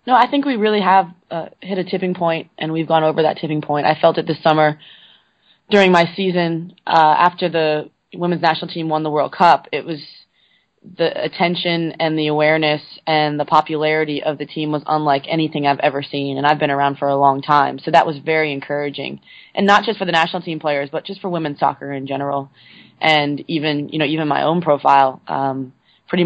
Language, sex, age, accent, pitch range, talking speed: English, female, 20-39, American, 140-160 Hz, 215 wpm